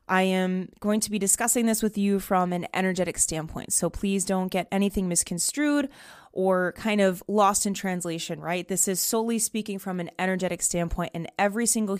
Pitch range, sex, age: 175-215 Hz, female, 20-39